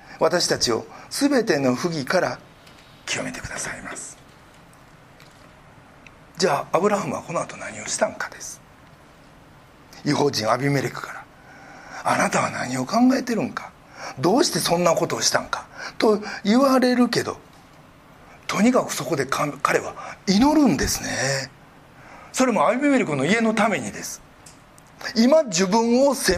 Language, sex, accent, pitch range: Japanese, male, native, 185-260 Hz